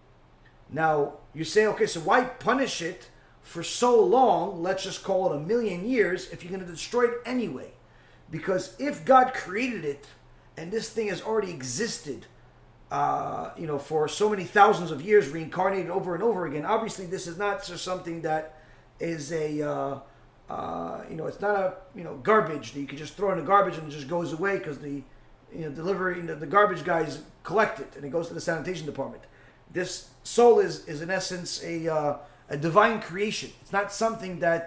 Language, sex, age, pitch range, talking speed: English, male, 30-49, 155-205 Hz, 200 wpm